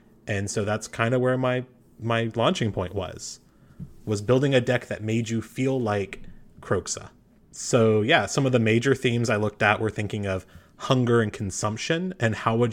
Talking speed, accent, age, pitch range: 190 wpm, American, 30-49, 100-120 Hz